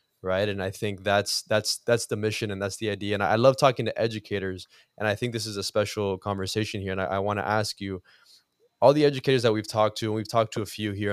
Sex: male